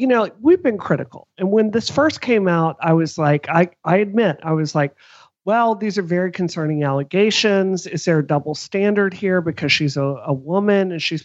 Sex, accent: male, American